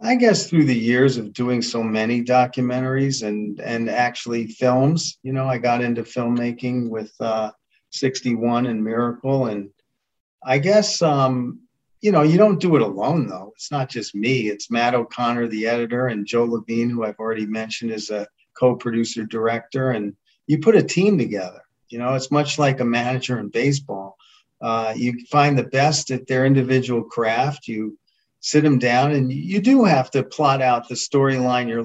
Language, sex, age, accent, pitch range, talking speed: English, male, 40-59, American, 115-140 Hz, 180 wpm